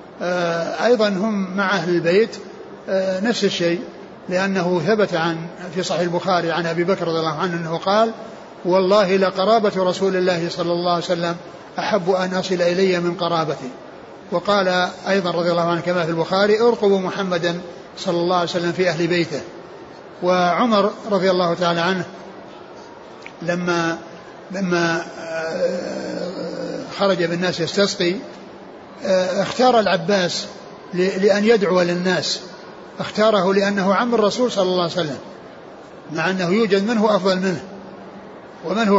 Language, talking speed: Arabic, 125 wpm